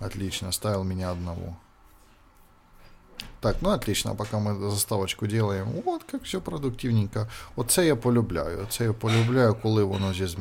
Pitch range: 95-115 Hz